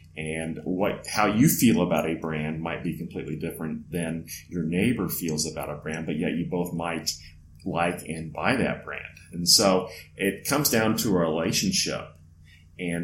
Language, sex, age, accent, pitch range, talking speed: English, male, 40-59, American, 80-90 Hz, 175 wpm